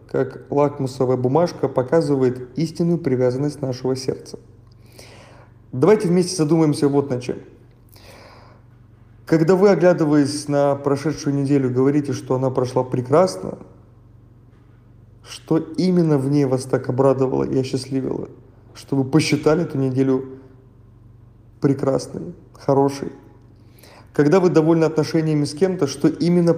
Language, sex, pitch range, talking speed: Russian, male, 120-150 Hz, 110 wpm